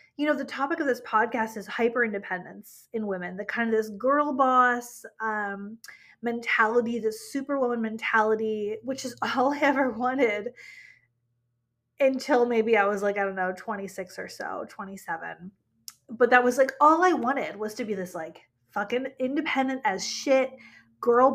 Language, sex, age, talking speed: English, female, 20-39, 165 wpm